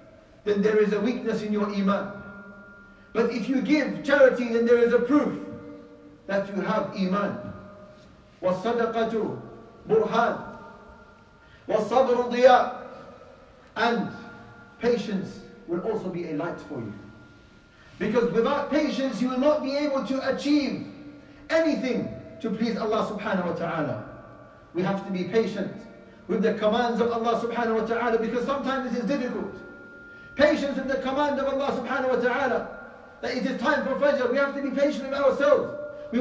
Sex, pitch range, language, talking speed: male, 220-275 Hz, English, 145 wpm